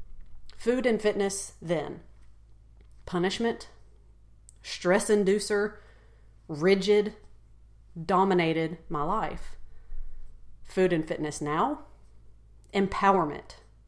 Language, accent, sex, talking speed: English, American, female, 70 wpm